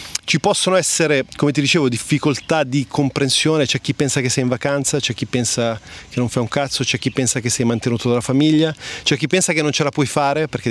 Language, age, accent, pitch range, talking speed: Italian, 30-49, native, 120-145 Hz, 235 wpm